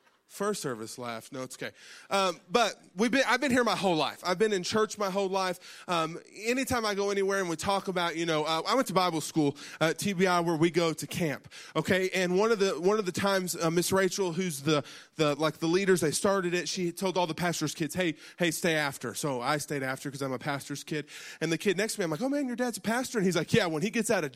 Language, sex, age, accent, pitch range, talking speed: English, male, 20-39, American, 160-220 Hz, 270 wpm